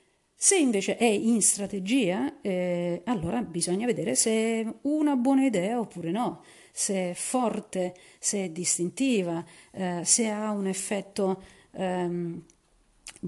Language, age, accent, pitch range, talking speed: Italian, 40-59, native, 180-225 Hz, 125 wpm